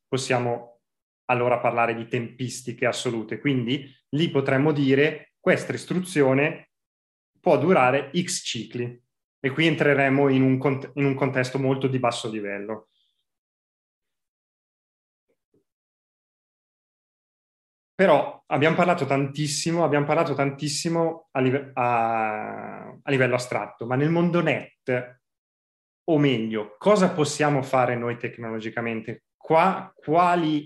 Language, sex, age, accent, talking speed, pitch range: Italian, male, 30-49, native, 105 wpm, 120-150 Hz